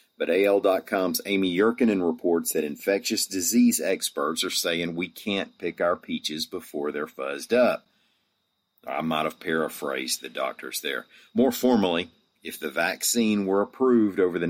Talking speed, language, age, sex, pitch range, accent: 150 wpm, English, 40-59, male, 80-100 Hz, American